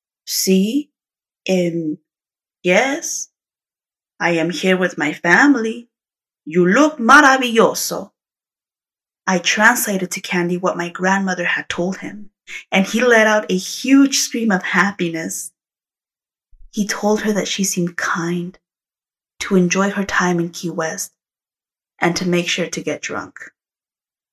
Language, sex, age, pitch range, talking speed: English, female, 20-39, 175-205 Hz, 130 wpm